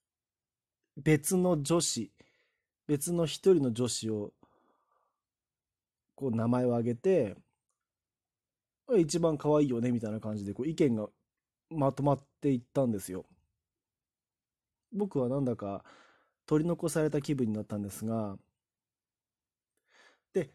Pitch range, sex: 115-170 Hz, male